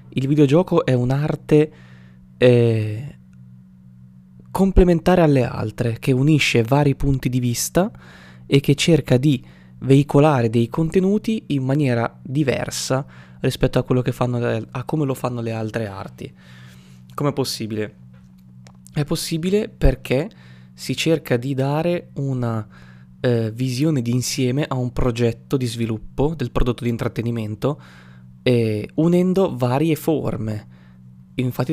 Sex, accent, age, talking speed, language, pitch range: male, native, 20-39, 125 wpm, Italian, 100-140 Hz